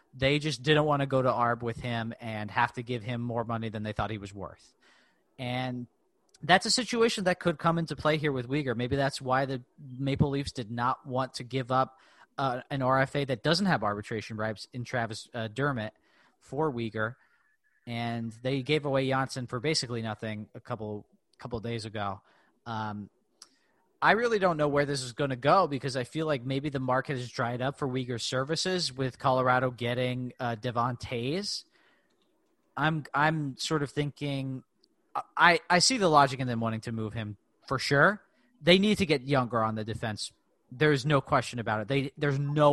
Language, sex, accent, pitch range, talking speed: English, male, American, 120-145 Hz, 195 wpm